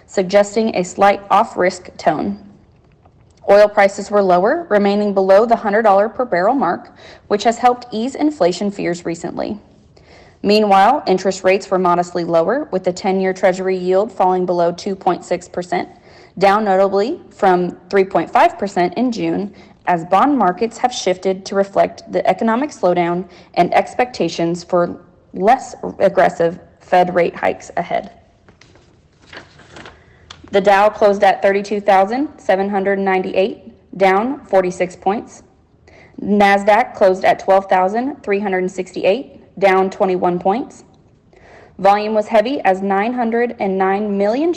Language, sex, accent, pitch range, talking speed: English, female, American, 185-210 Hz, 110 wpm